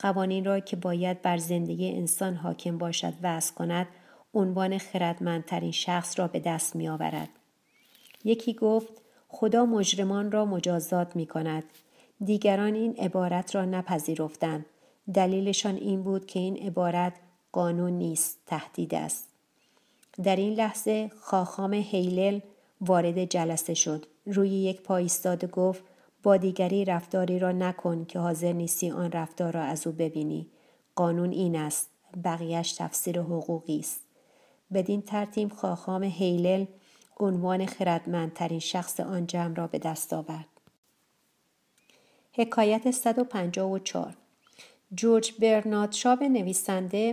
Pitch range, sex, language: 175-205 Hz, female, Persian